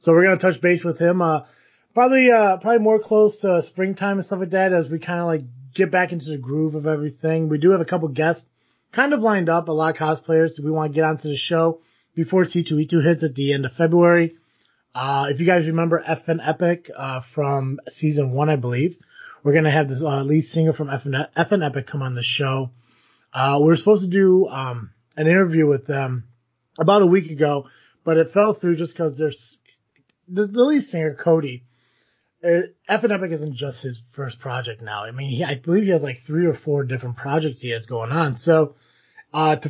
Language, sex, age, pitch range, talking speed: English, male, 30-49, 135-170 Hz, 220 wpm